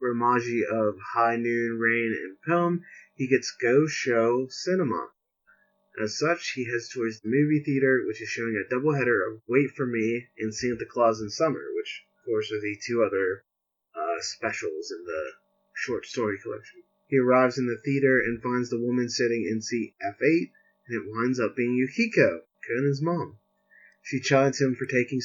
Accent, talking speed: American, 180 wpm